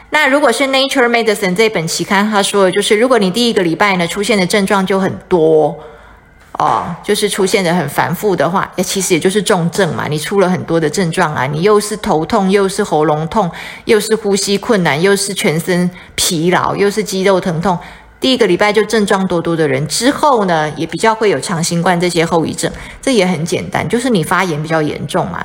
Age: 20-39